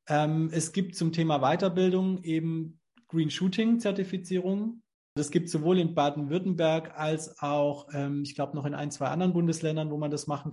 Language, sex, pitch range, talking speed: German, male, 145-175 Hz, 165 wpm